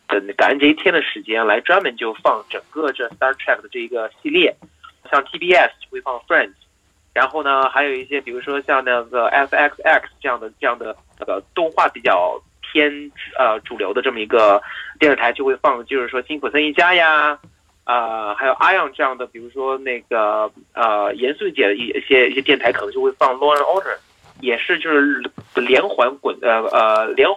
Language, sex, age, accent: Chinese, male, 30-49, native